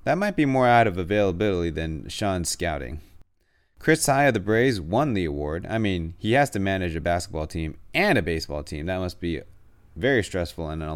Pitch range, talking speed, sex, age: 80-105 Hz, 210 wpm, male, 30-49